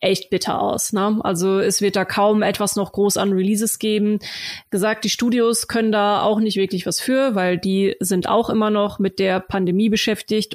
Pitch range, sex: 190-210 Hz, female